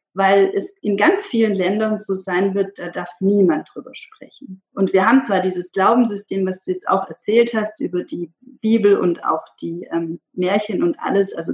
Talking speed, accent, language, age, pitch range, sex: 190 wpm, German, German, 30-49, 185-225 Hz, female